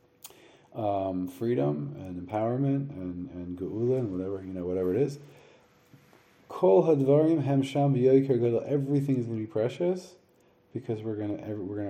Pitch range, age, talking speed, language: 90-115 Hz, 30-49, 145 wpm, English